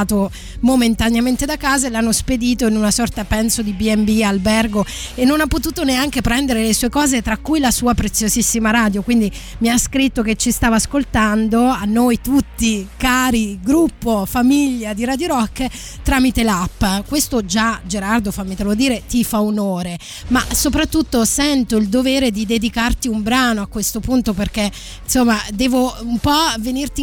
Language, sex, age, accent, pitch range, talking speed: Italian, female, 20-39, native, 220-260 Hz, 165 wpm